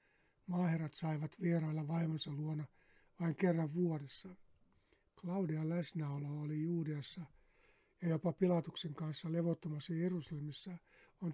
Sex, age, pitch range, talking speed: male, 60-79, 155-175 Hz, 100 wpm